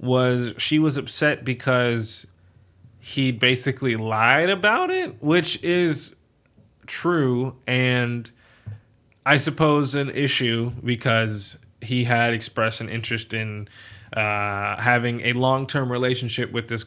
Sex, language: male, English